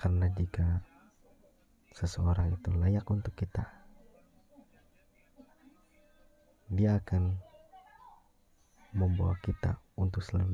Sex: male